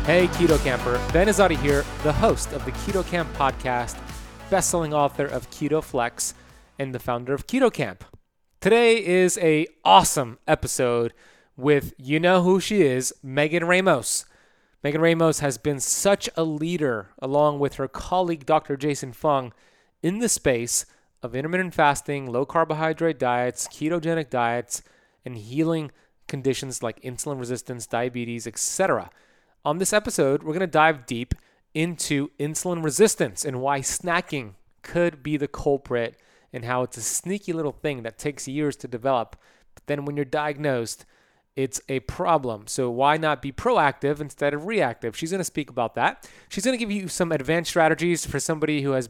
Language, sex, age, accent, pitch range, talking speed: English, male, 30-49, American, 125-165 Hz, 165 wpm